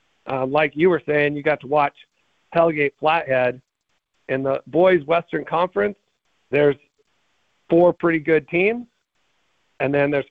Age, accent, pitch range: 50-69, American, 135-155 Hz